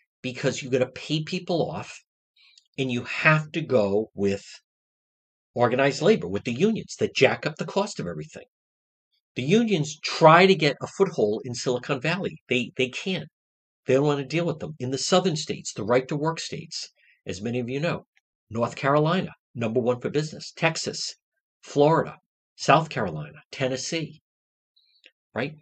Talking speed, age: 165 wpm, 50-69